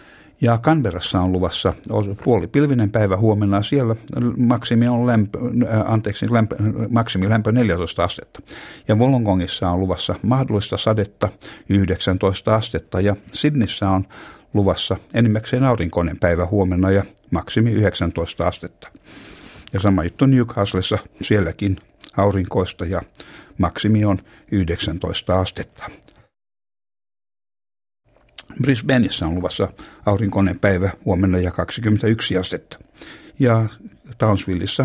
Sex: male